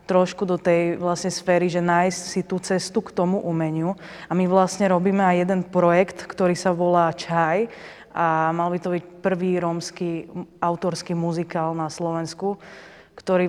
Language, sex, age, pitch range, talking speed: Slovak, female, 20-39, 175-210 Hz, 160 wpm